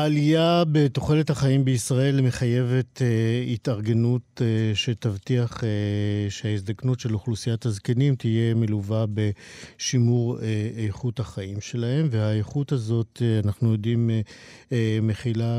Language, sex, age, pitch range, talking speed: Hebrew, male, 50-69, 110-130 Hz, 110 wpm